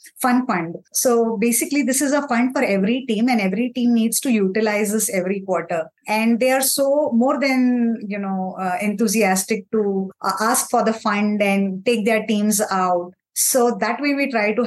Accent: Indian